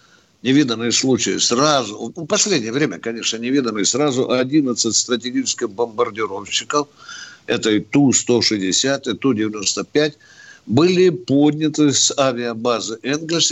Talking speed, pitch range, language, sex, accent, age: 95 wpm, 115-150 Hz, Russian, male, native, 60-79